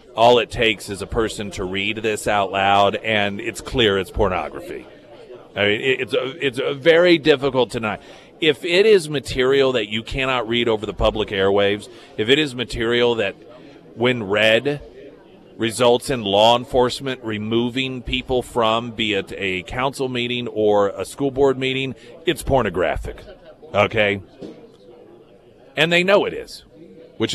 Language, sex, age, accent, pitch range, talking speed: English, male, 40-59, American, 110-140 Hz, 160 wpm